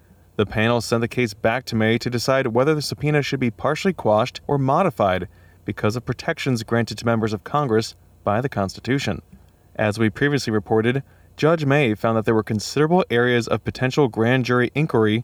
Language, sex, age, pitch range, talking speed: English, male, 20-39, 110-135 Hz, 185 wpm